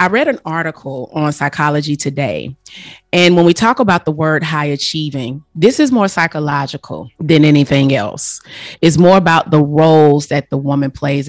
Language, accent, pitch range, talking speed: English, American, 140-170 Hz, 170 wpm